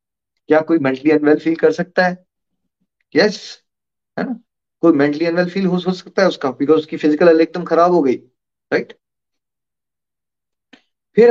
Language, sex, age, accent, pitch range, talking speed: Hindi, male, 30-49, native, 150-185 Hz, 150 wpm